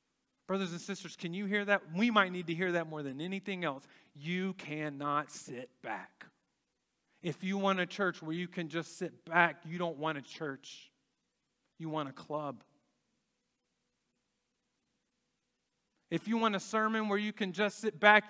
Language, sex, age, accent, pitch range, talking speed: English, male, 40-59, American, 150-200 Hz, 170 wpm